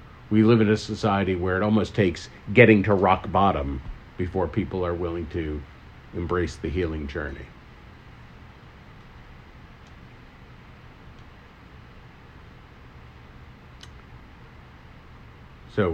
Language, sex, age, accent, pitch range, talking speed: English, male, 50-69, American, 80-110 Hz, 85 wpm